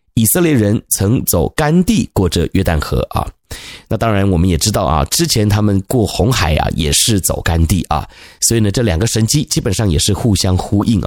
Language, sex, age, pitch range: Chinese, male, 30-49, 90-120 Hz